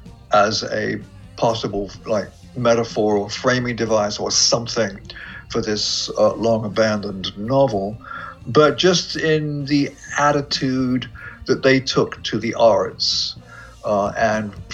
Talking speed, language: 120 wpm, English